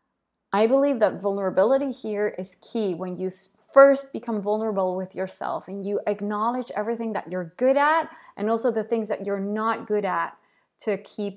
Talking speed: 175 wpm